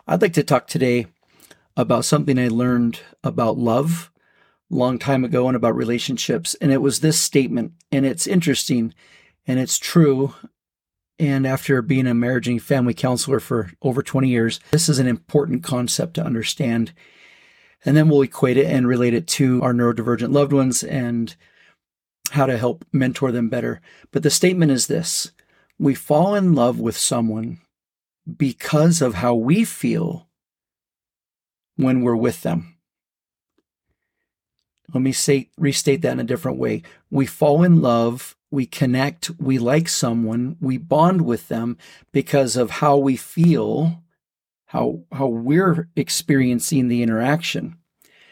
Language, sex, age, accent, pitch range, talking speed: English, male, 40-59, American, 120-150 Hz, 150 wpm